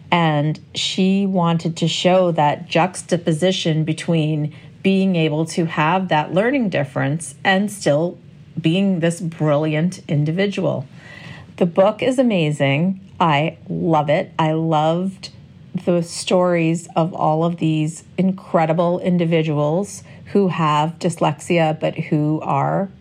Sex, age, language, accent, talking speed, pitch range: female, 40-59, English, American, 115 wpm, 155-185 Hz